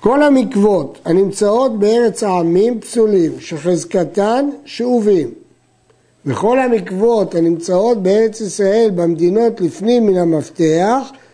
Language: Hebrew